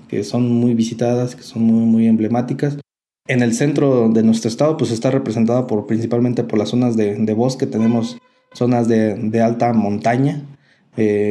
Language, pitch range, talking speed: Spanish, 110-125 Hz, 175 wpm